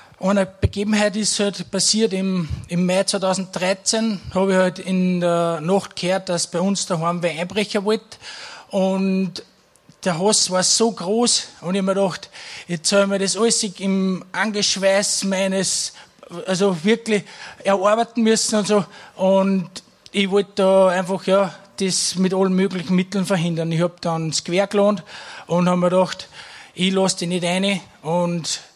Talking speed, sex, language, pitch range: 160 wpm, male, German, 175-200 Hz